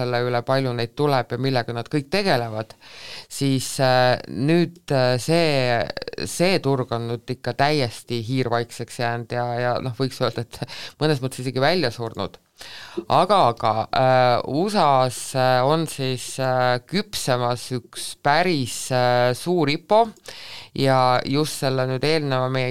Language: English